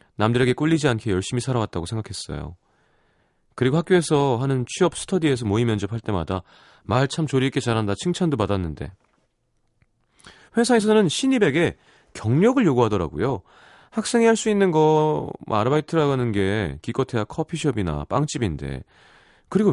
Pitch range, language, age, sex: 100-155 Hz, Korean, 30-49, male